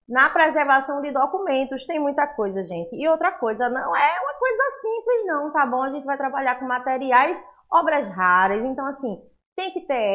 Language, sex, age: Portuguese, female, 20-39